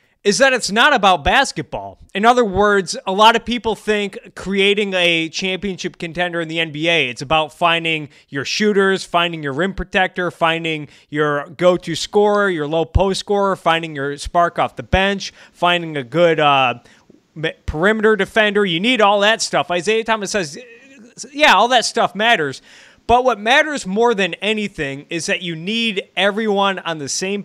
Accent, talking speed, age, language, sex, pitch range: American, 170 wpm, 20-39, English, male, 150-200 Hz